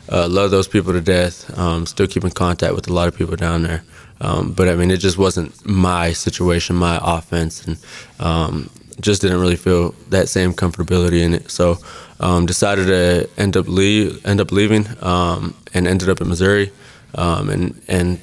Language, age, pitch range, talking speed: English, 20-39, 90-100 Hz, 190 wpm